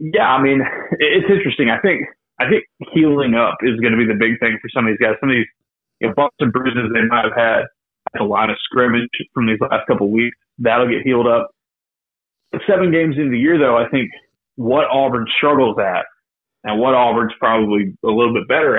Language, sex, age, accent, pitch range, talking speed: English, male, 30-49, American, 115-135 Hz, 215 wpm